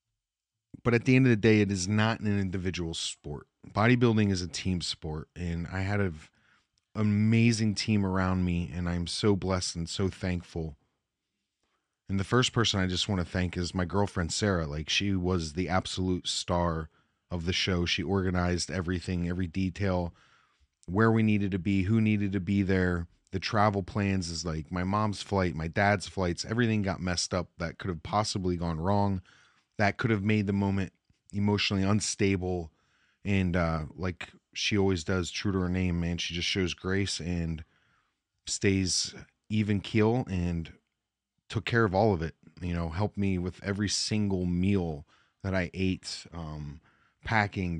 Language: English